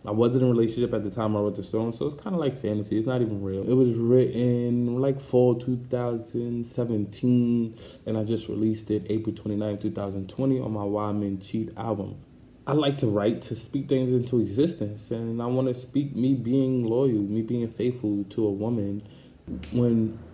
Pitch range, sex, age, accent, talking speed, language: 105-125 Hz, male, 20-39, American, 195 wpm, English